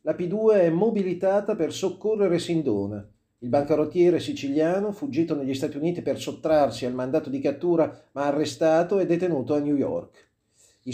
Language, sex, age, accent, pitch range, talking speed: Italian, male, 40-59, native, 130-175 Hz, 155 wpm